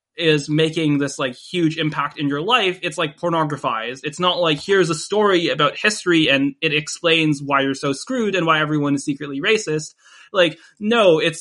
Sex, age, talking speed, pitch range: male, 20-39, 190 wpm, 145-175 Hz